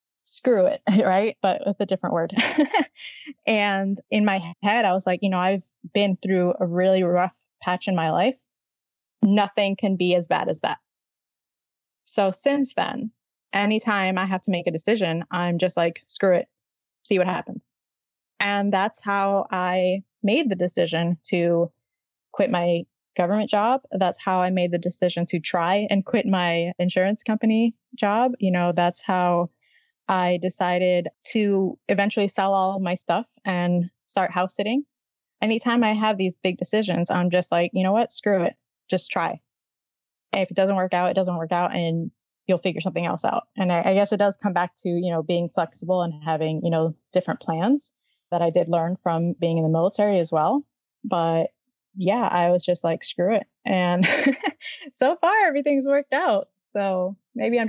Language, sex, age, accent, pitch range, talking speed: English, female, 20-39, American, 175-215 Hz, 180 wpm